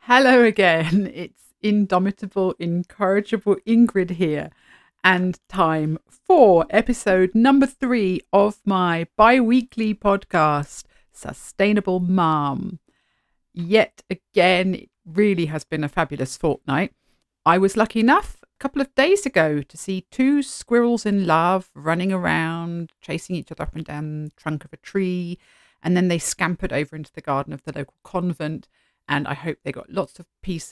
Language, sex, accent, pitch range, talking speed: English, female, British, 155-205 Hz, 150 wpm